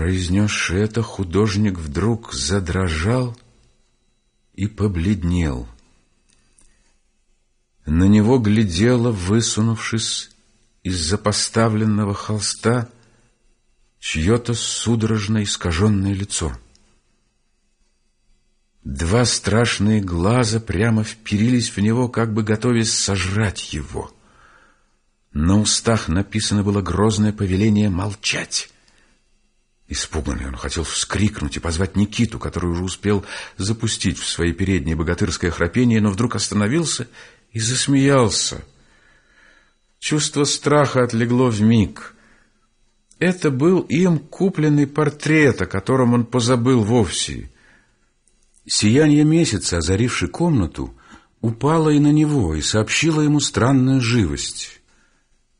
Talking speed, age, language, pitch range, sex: 95 wpm, 50-69, Russian, 95-125 Hz, male